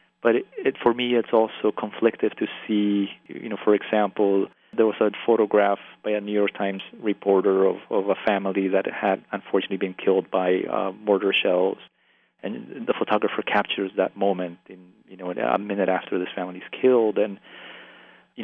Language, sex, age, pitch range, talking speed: English, male, 40-59, 100-115 Hz, 180 wpm